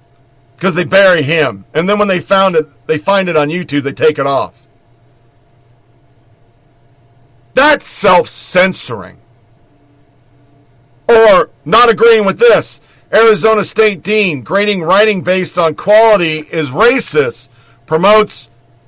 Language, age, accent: English, 50-69, American